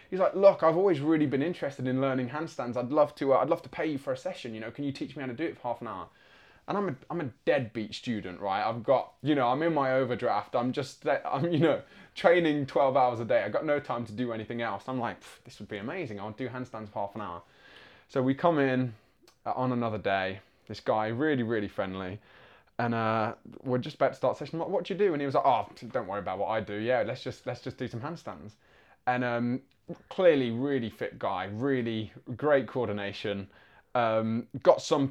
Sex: male